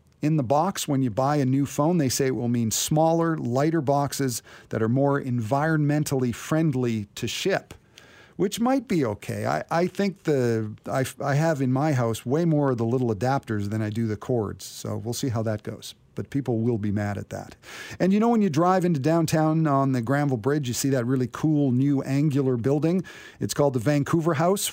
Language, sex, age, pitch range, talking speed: English, male, 50-69, 120-160 Hz, 210 wpm